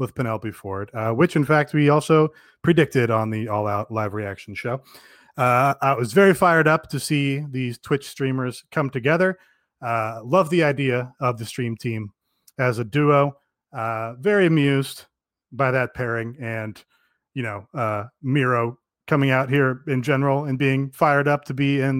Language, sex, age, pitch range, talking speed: English, male, 30-49, 120-155 Hz, 175 wpm